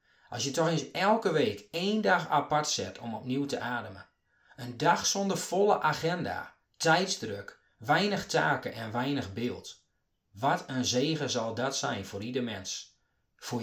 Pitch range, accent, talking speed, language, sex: 115-155 Hz, Dutch, 155 wpm, Dutch, male